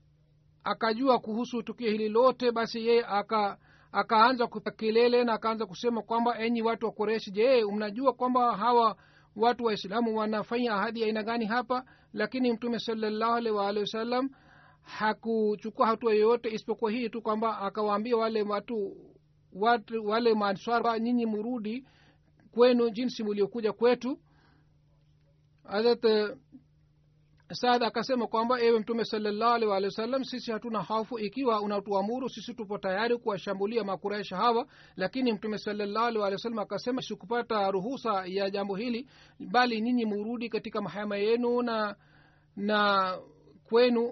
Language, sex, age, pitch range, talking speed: Swahili, male, 50-69, 205-235 Hz, 130 wpm